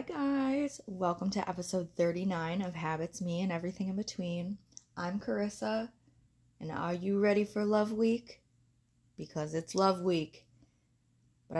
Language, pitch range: English, 140-200 Hz